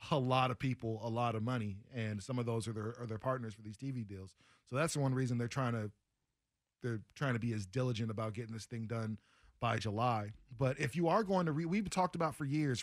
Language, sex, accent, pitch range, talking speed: English, male, American, 115-135 Hz, 255 wpm